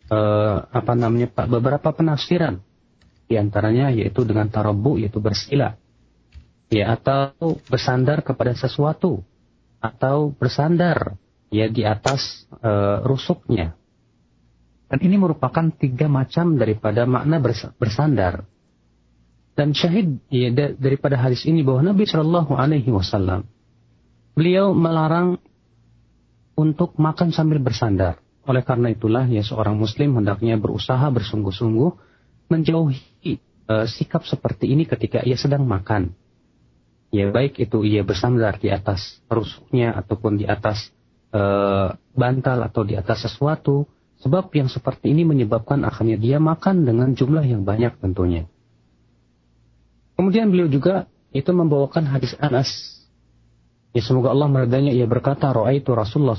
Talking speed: 120 wpm